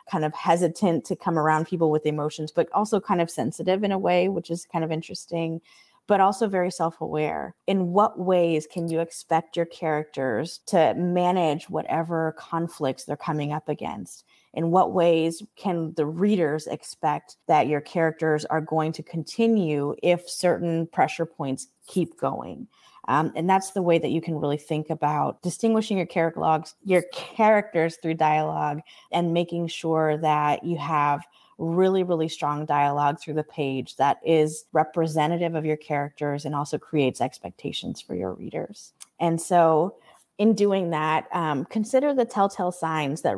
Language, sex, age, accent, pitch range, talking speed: English, female, 20-39, American, 155-180 Hz, 160 wpm